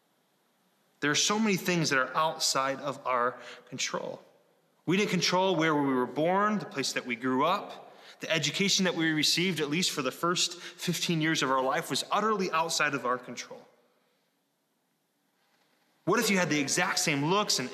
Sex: male